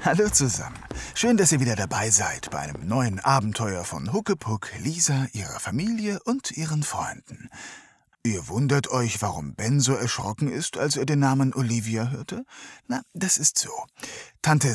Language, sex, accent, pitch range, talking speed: German, male, German, 115-180 Hz, 160 wpm